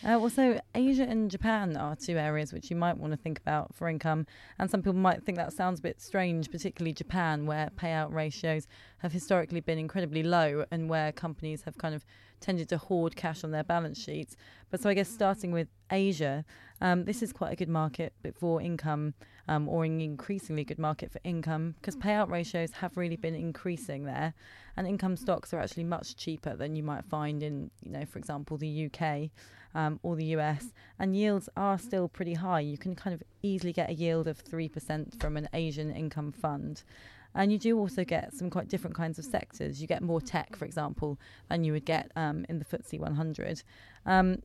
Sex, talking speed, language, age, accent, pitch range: female, 205 wpm, English, 20-39, British, 155-185 Hz